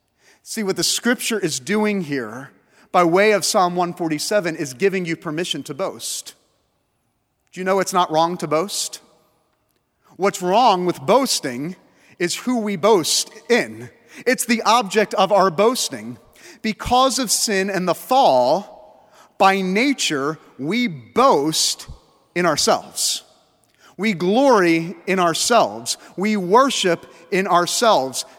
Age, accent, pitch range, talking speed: 40-59, American, 160-210 Hz, 130 wpm